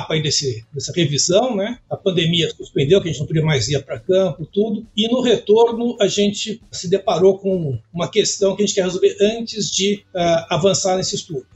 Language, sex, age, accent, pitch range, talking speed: Portuguese, male, 60-79, Brazilian, 170-215 Hz, 210 wpm